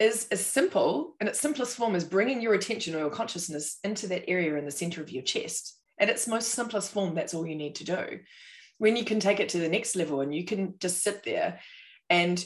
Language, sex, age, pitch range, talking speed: English, female, 20-39, 165-230 Hz, 240 wpm